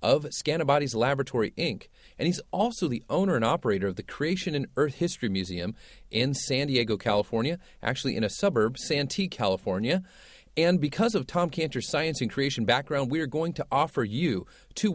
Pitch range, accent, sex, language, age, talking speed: 120-180 Hz, American, male, English, 40-59, 175 wpm